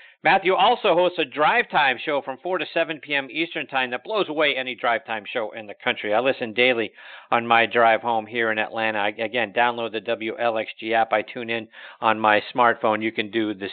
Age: 50-69